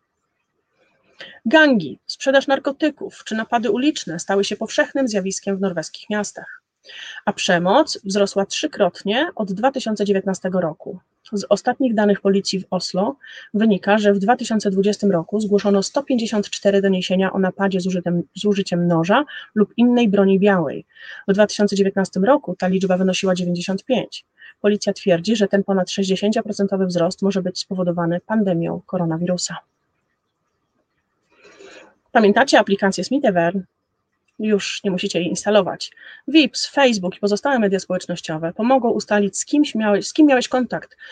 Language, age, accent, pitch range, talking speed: Polish, 30-49, native, 185-220 Hz, 125 wpm